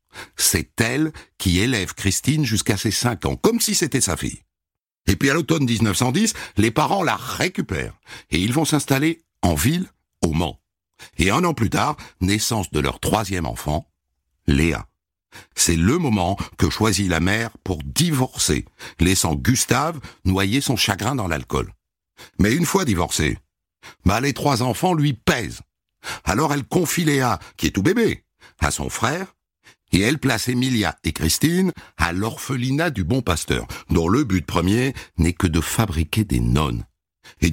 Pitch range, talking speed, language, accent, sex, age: 90-140 Hz, 160 wpm, French, French, male, 60-79